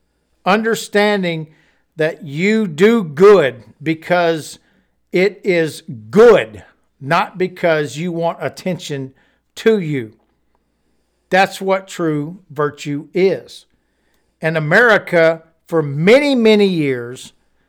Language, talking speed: English, 90 wpm